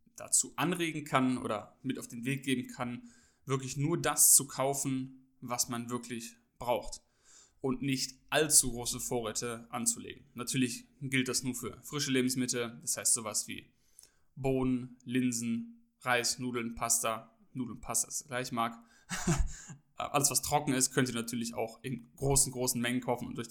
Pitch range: 120-135 Hz